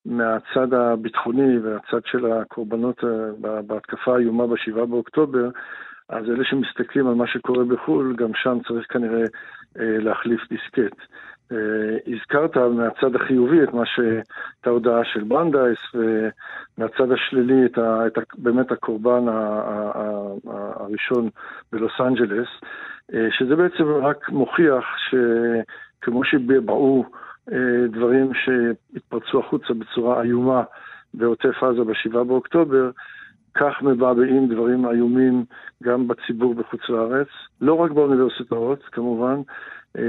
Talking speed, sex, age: 110 wpm, male, 50-69